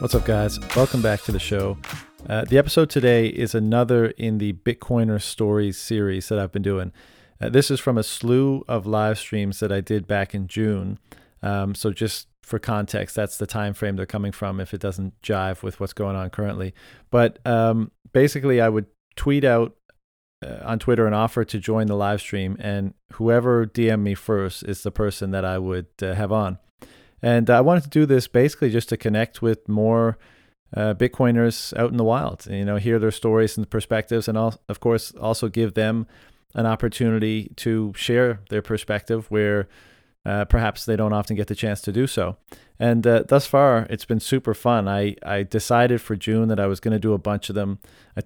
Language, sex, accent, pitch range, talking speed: English, male, American, 100-115 Hz, 205 wpm